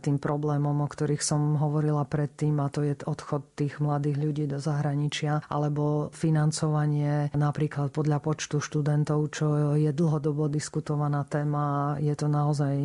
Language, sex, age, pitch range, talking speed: Slovak, female, 40-59, 145-155 Hz, 140 wpm